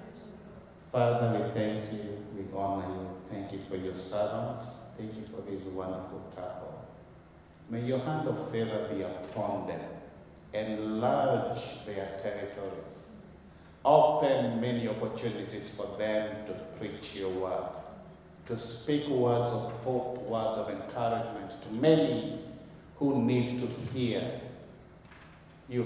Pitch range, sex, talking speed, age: 100-125 Hz, male, 125 wpm, 50-69